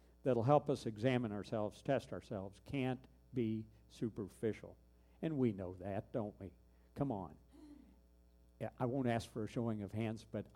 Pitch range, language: 95-130 Hz, English